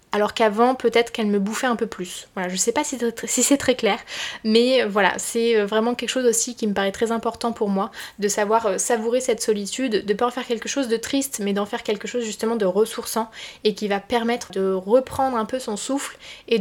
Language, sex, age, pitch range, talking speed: French, female, 20-39, 210-245 Hz, 235 wpm